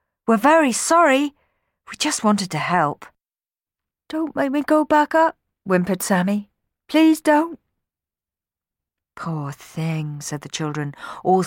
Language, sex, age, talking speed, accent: English, female, 50-69, 125 wpm, British